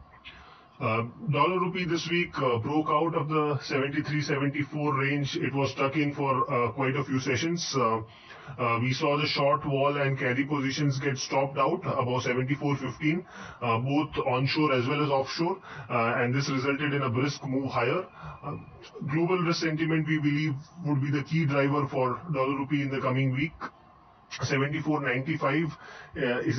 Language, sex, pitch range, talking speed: English, male, 130-150 Hz, 165 wpm